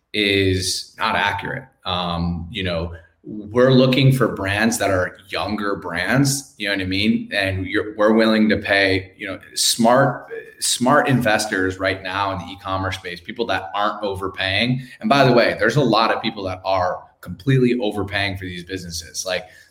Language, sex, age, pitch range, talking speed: English, male, 20-39, 95-105 Hz, 170 wpm